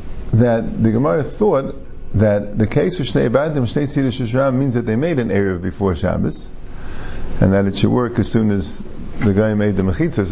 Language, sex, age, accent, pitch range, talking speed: English, male, 50-69, American, 100-140 Hz, 180 wpm